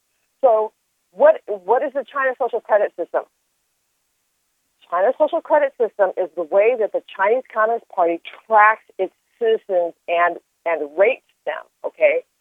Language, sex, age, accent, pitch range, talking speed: English, female, 50-69, American, 180-265 Hz, 140 wpm